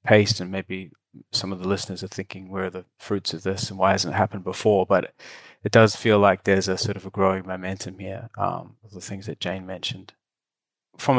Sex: male